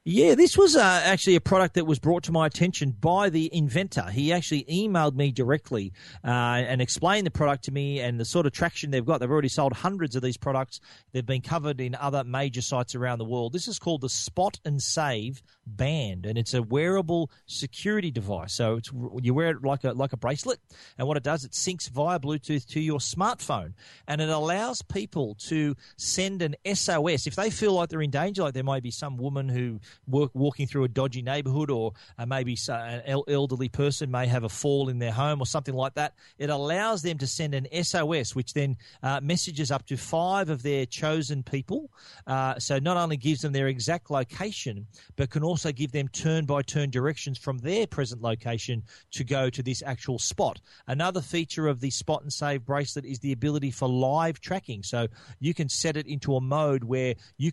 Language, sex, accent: English, male, Australian